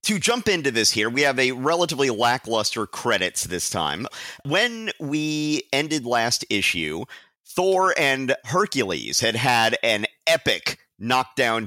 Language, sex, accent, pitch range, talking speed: English, male, American, 105-140 Hz, 135 wpm